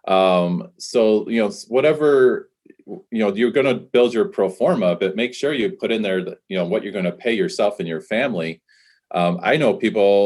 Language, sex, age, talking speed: English, male, 30-49, 210 wpm